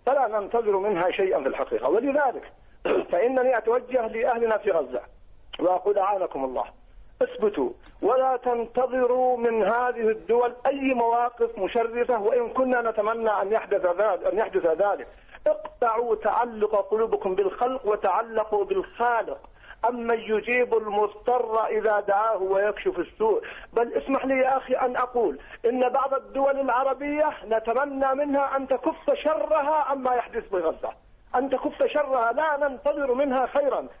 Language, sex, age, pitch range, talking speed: Arabic, male, 50-69, 230-285 Hz, 125 wpm